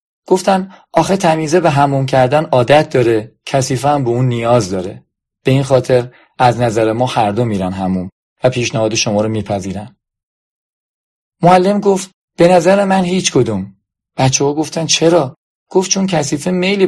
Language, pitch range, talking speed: Persian, 110-155 Hz, 150 wpm